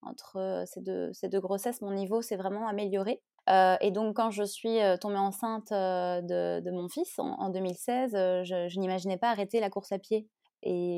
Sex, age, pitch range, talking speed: female, 20-39, 180-210 Hz, 195 wpm